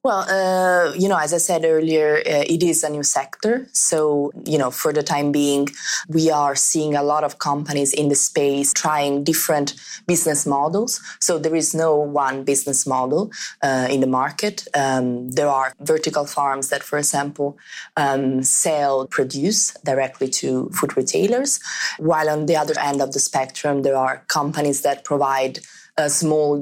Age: 20-39